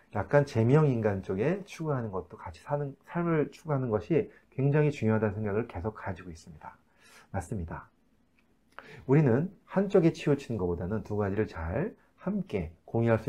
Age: 30-49